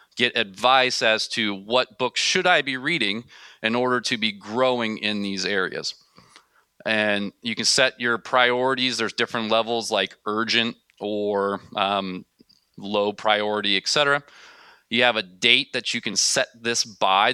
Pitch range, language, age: 105-130 Hz, English, 30-49